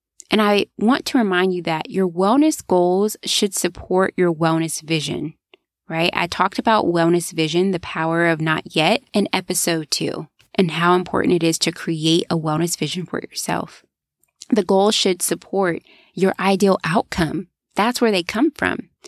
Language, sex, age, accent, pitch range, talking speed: English, female, 20-39, American, 170-205 Hz, 165 wpm